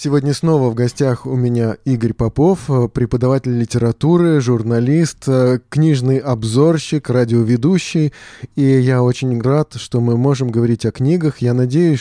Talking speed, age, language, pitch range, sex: 130 wpm, 20-39, Russian, 125-155 Hz, male